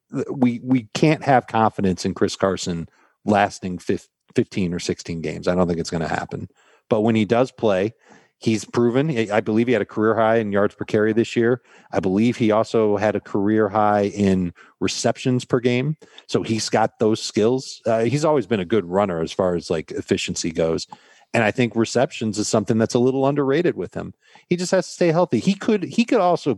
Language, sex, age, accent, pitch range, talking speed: English, male, 40-59, American, 105-135 Hz, 210 wpm